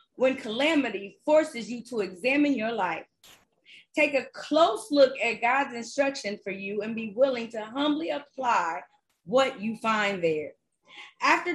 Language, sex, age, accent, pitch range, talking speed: English, female, 30-49, American, 205-285 Hz, 145 wpm